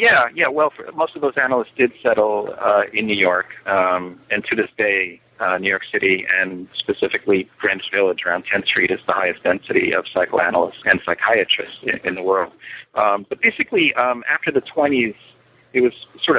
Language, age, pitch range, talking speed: English, 40-59, 95-125 Hz, 185 wpm